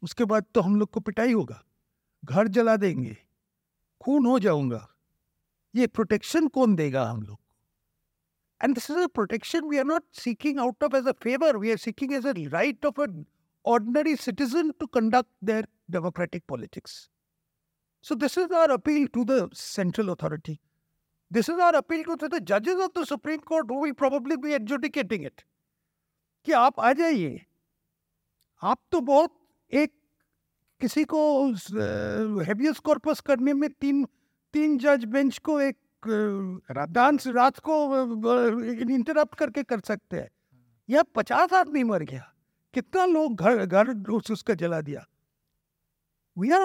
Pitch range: 195-295 Hz